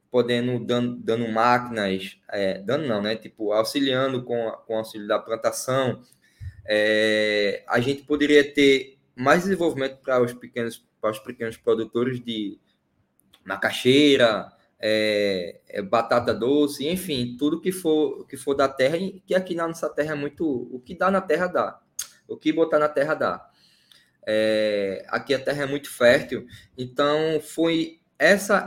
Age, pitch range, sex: 20-39, 115-145 Hz, male